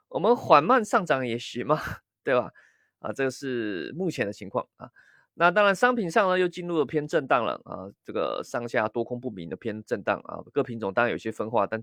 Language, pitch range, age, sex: Chinese, 120-180 Hz, 20-39, male